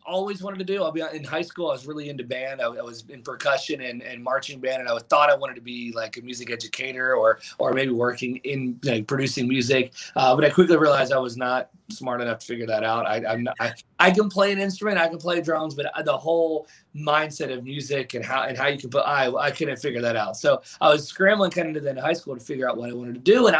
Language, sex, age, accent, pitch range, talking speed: English, male, 20-39, American, 125-155 Hz, 275 wpm